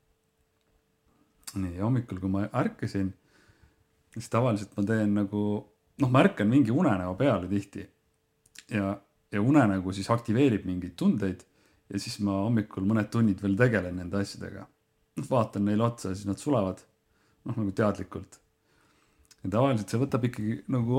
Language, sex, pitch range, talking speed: English, male, 95-110 Hz, 145 wpm